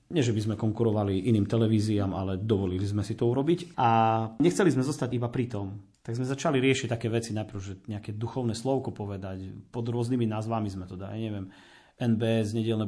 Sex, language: male, Slovak